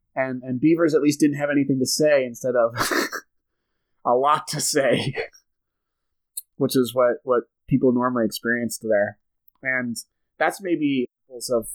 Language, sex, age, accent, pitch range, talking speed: English, male, 30-49, American, 120-140 Hz, 145 wpm